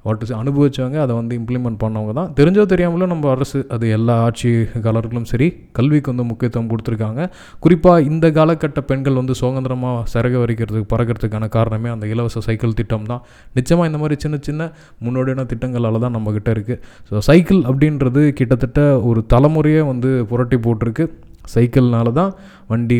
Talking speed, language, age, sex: 145 wpm, Tamil, 20-39, male